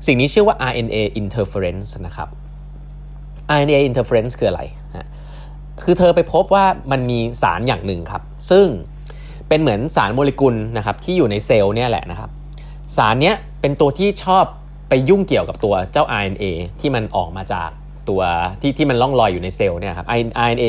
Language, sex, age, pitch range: Thai, male, 20-39, 110-150 Hz